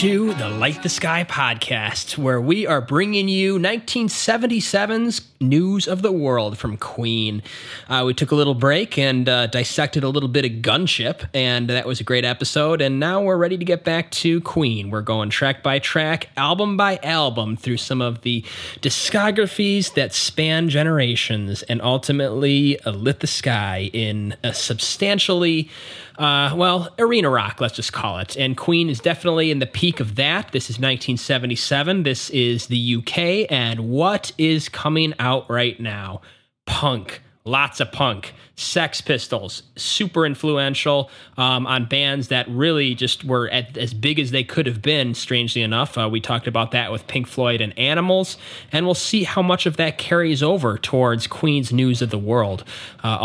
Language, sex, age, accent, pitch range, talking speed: English, male, 20-39, American, 120-160 Hz, 170 wpm